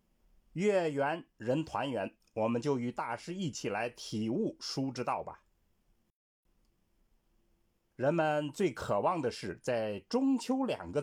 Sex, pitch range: male, 115-175 Hz